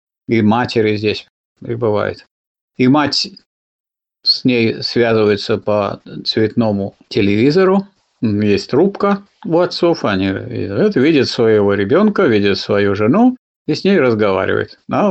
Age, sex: 50-69, male